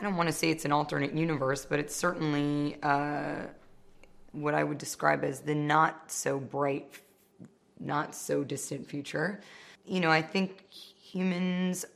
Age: 20-39